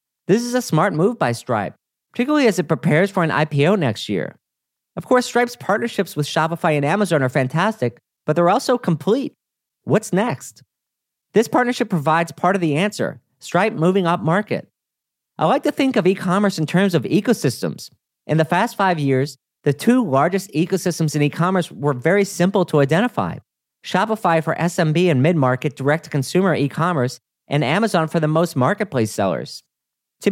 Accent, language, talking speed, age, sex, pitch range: American, English, 170 wpm, 40-59, male, 150-195 Hz